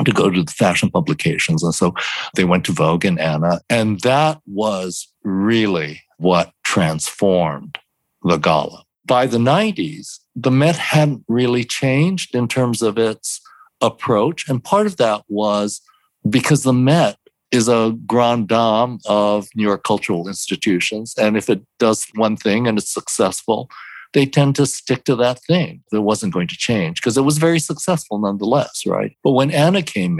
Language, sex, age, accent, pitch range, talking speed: English, male, 60-79, American, 110-150 Hz, 165 wpm